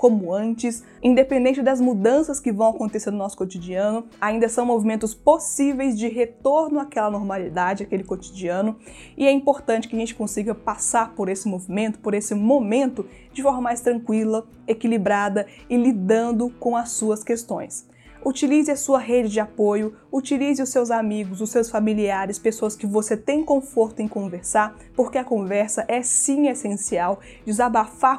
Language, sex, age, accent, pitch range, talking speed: Portuguese, female, 20-39, Brazilian, 215-265 Hz, 155 wpm